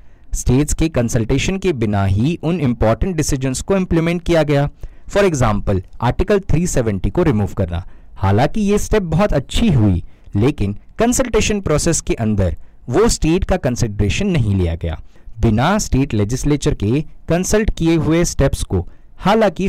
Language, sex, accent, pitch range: Hindi, male, native, 105-165 Hz